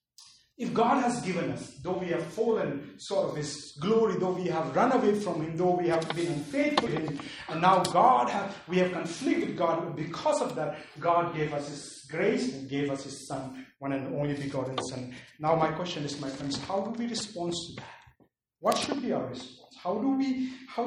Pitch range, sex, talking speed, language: 155-225 Hz, male, 205 wpm, English